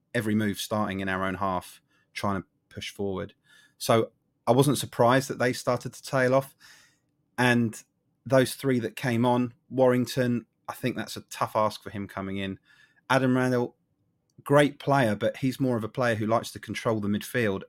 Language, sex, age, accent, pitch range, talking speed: English, male, 30-49, British, 105-130 Hz, 185 wpm